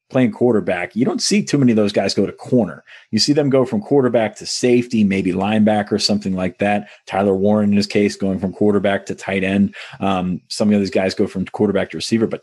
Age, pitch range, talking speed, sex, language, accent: 30-49, 95-110 Hz, 235 wpm, male, English, American